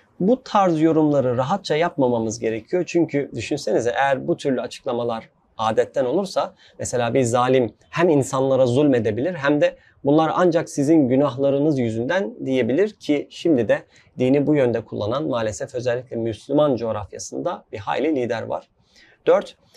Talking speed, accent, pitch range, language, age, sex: 135 wpm, native, 125-160 Hz, Turkish, 30-49, male